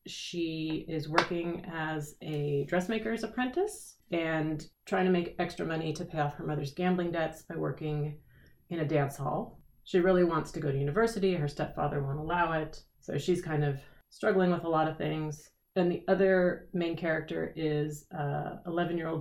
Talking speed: 175 wpm